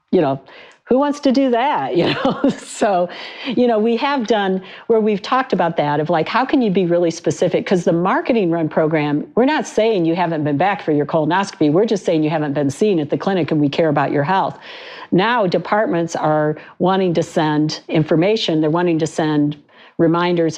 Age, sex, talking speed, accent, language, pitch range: 50-69, female, 205 wpm, American, English, 155-200 Hz